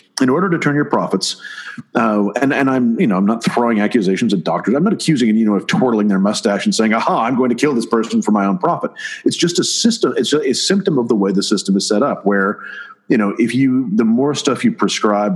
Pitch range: 100-145 Hz